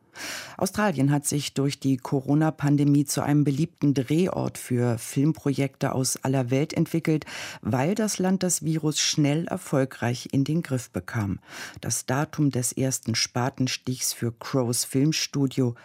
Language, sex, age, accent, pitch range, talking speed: German, female, 50-69, German, 125-155 Hz, 135 wpm